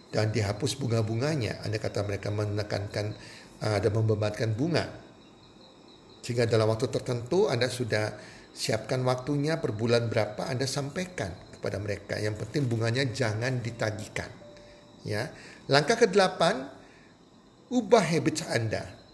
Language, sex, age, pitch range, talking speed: Indonesian, male, 50-69, 115-180 Hz, 115 wpm